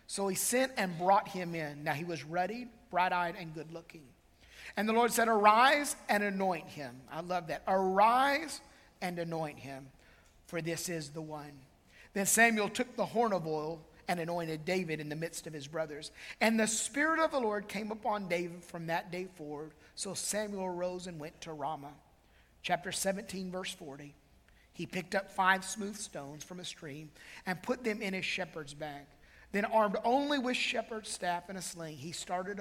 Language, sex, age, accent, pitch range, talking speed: English, male, 50-69, American, 160-205 Hz, 185 wpm